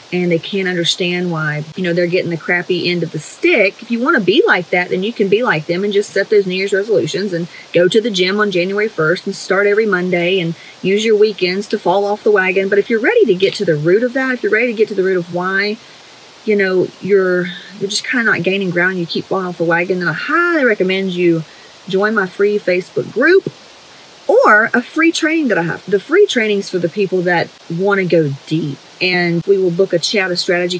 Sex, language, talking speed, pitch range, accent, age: female, English, 250 wpm, 175-220 Hz, American, 30-49